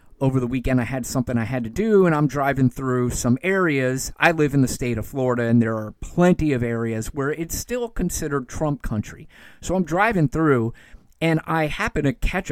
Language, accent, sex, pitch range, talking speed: English, American, male, 125-160 Hz, 210 wpm